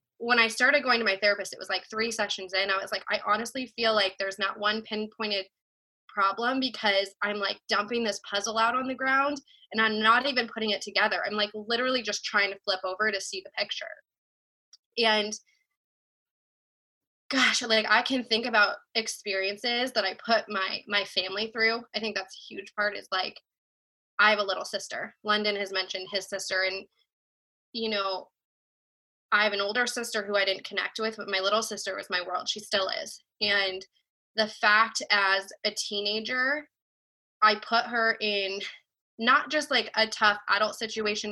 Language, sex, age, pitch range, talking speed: English, female, 20-39, 200-230 Hz, 185 wpm